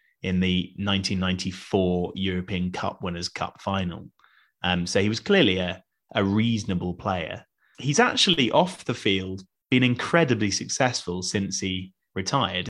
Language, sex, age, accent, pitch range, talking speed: English, male, 20-39, British, 95-110 Hz, 130 wpm